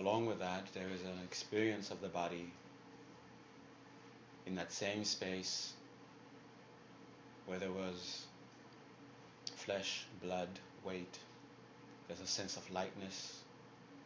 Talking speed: 105 wpm